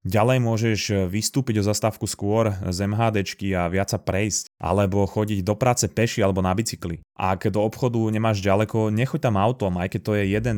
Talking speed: 195 wpm